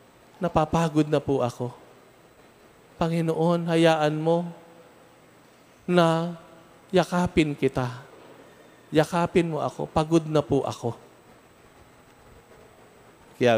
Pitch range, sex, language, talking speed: 125-165 Hz, male, Filipino, 80 wpm